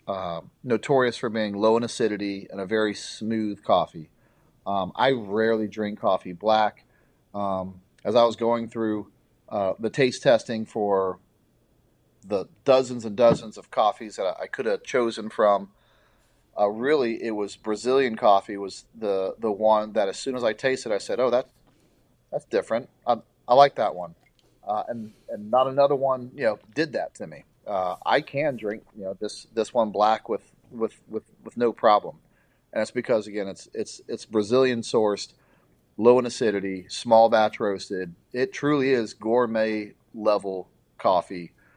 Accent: American